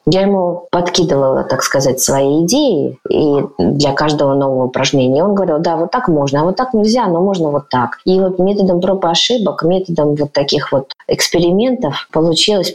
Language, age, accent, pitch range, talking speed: Russian, 20-39, native, 140-180 Hz, 175 wpm